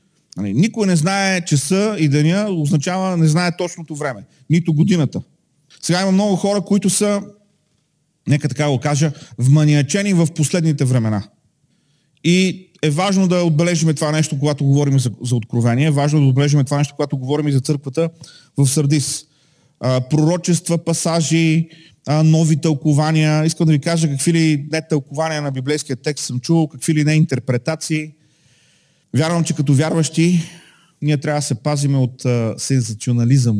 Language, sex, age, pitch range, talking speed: Bulgarian, male, 40-59, 135-165 Hz, 150 wpm